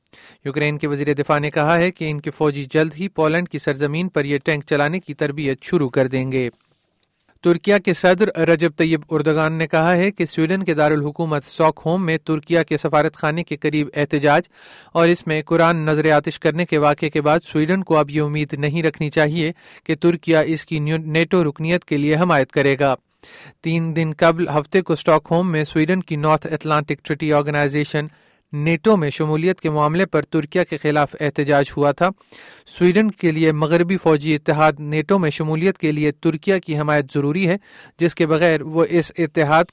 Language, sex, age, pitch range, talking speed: Urdu, male, 40-59, 150-170 Hz, 195 wpm